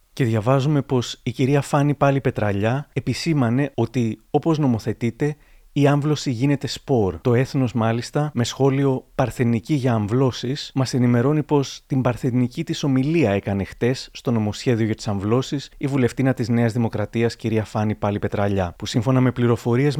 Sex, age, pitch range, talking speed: male, 30-49, 110-140 Hz, 145 wpm